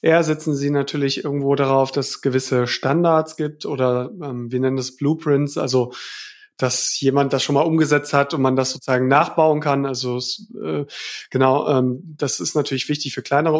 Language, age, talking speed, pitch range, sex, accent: German, 30-49, 180 wpm, 135-160 Hz, male, German